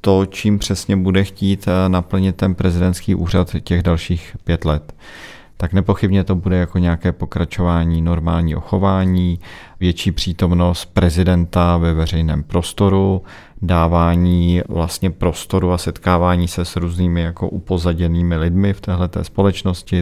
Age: 40-59